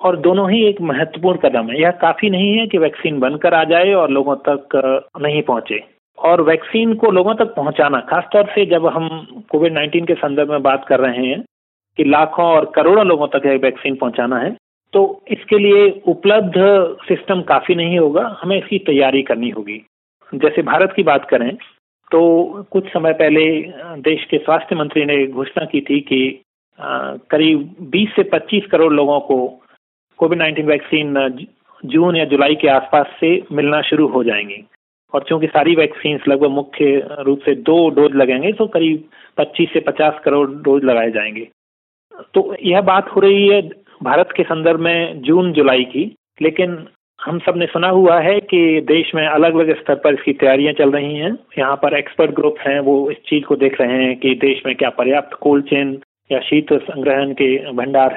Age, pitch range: 40-59, 140-175 Hz